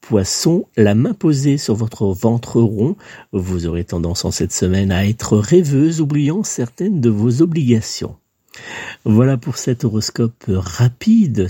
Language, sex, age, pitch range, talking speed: French, male, 50-69, 105-135 Hz, 140 wpm